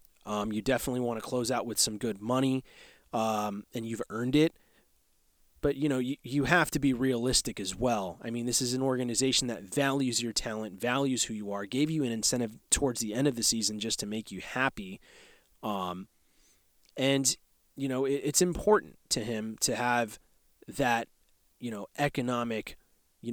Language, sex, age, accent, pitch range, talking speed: English, male, 30-49, American, 110-140 Hz, 185 wpm